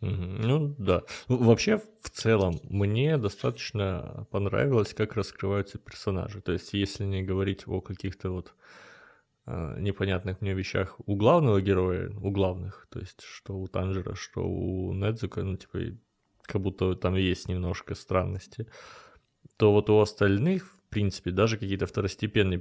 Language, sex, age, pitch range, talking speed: Russian, male, 20-39, 95-115 Hz, 140 wpm